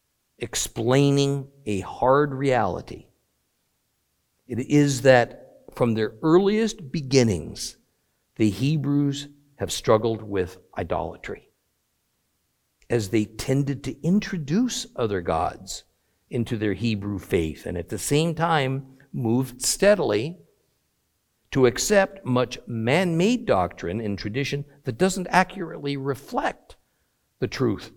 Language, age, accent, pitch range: English, 60-79, American, 125-200 Hz